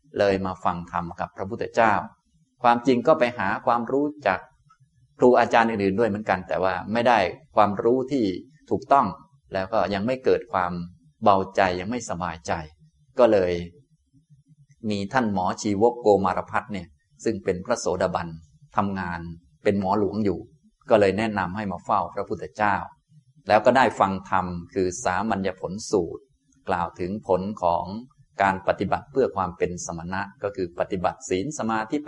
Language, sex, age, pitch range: Thai, male, 20-39, 90-125 Hz